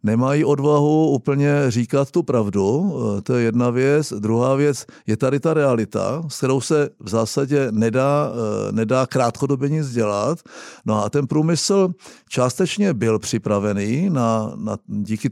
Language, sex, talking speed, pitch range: Czech, male, 140 wpm, 110-135 Hz